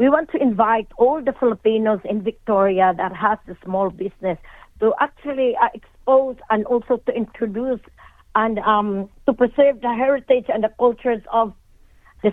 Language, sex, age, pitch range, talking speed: Filipino, female, 40-59, 220-255 Hz, 160 wpm